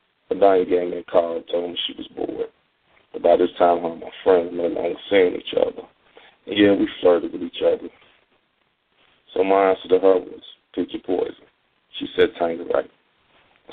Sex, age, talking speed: male, 40-59, 195 wpm